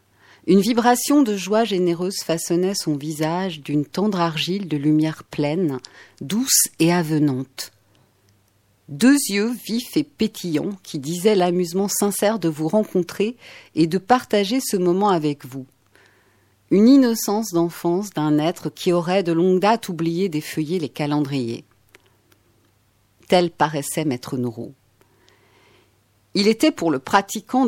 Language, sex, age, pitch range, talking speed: French, female, 40-59, 145-200 Hz, 130 wpm